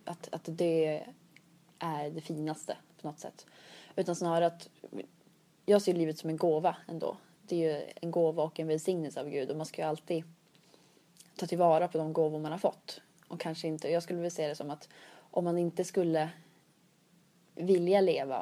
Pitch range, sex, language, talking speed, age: 160-175 Hz, female, Swedish, 190 wpm, 20-39